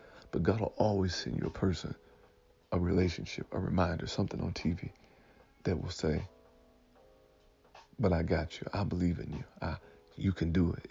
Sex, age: male, 40-59